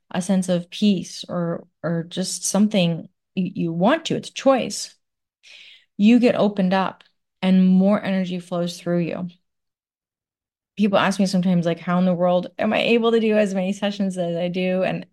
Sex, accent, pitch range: female, American, 175-200 Hz